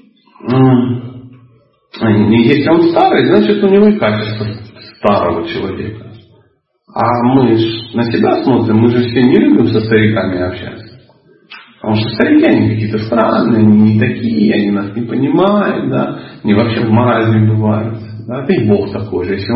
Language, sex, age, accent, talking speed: Russian, male, 40-59, native, 155 wpm